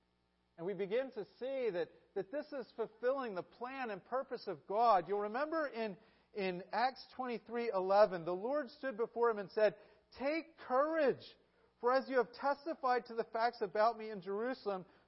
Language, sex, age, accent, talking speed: English, male, 40-59, American, 170 wpm